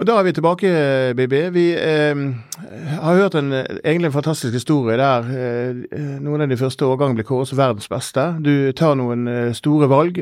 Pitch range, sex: 125-155 Hz, male